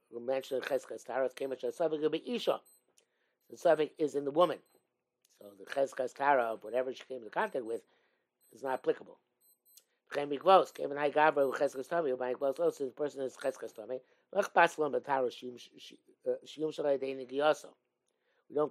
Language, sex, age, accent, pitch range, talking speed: English, male, 60-79, American, 125-160 Hz, 70 wpm